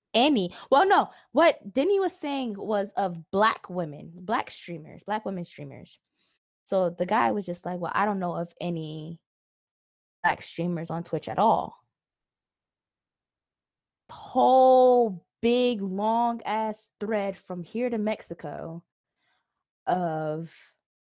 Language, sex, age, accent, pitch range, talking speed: English, female, 20-39, American, 170-220 Hz, 125 wpm